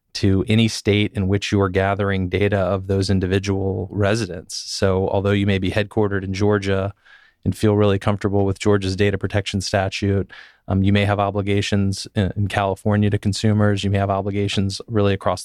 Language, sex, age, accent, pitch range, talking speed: English, male, 30-49, American, 95-100 Hz, 175 wpm